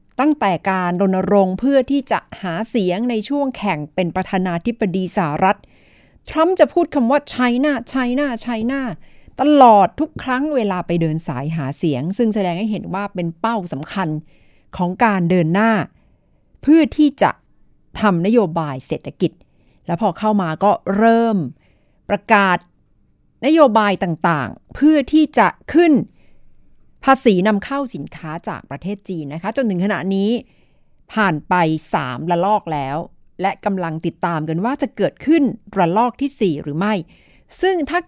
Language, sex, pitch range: Thai, female, 175-255 Hz